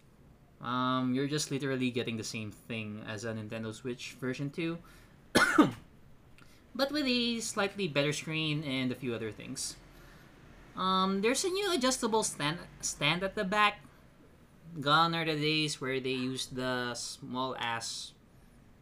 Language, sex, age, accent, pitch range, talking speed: Filipino, male, 20-39, native, 125-165 Hz, 145 wpm